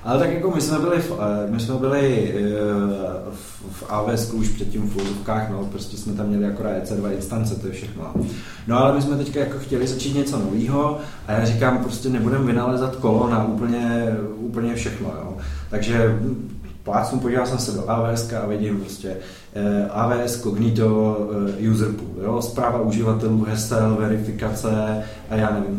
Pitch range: 100-115 Hz